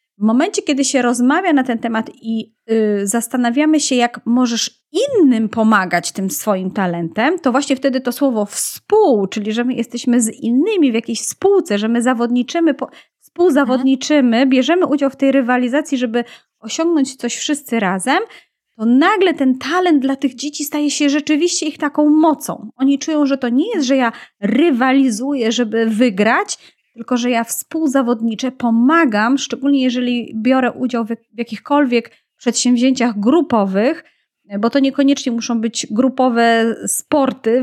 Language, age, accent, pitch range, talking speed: Polish, 30-49, native, 230-285 Hz, 145 wpm